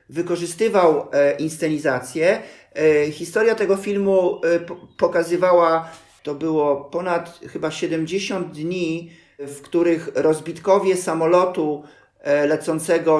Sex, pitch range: male, 160-185 Hz